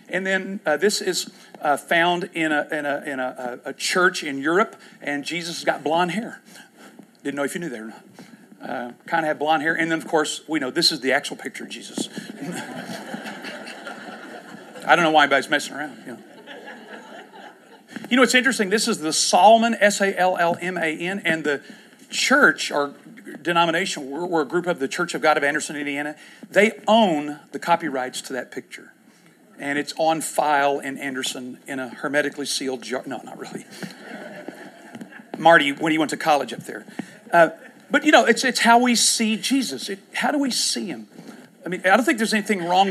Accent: American